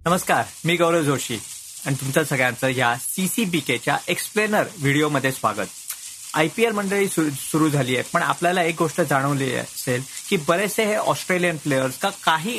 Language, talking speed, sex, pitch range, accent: Marathi, 150 wpm, male, 135-185 Hz, native